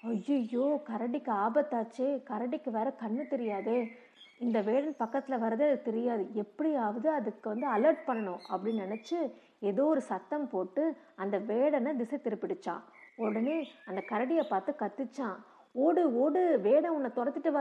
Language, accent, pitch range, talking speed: Tamil, native, 225-290 Hz, 130 wpm